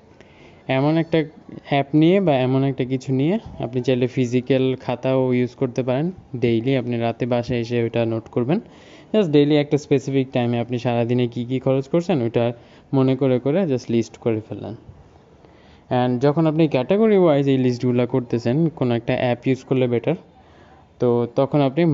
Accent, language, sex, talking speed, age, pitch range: native, Bengali, male, 135 wpm, 20-39, 120-150 Hz